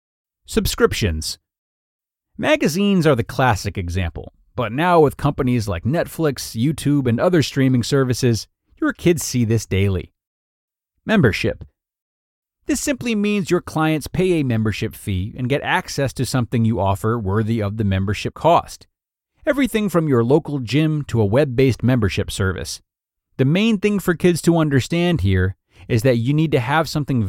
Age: 30-49